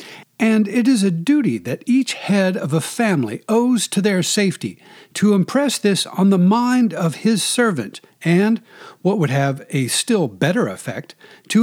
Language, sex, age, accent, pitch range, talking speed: English, male, 60-79, American, 155-220 Hz, 170 wpm